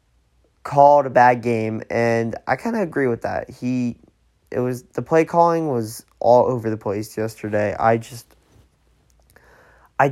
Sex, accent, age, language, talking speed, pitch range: male, American, 20-39, English, 155 wpm, 115-130 Hz